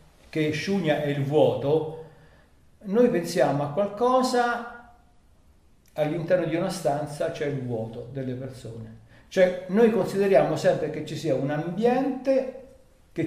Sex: male